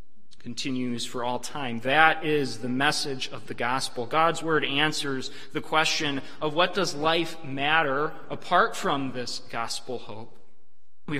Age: 30-49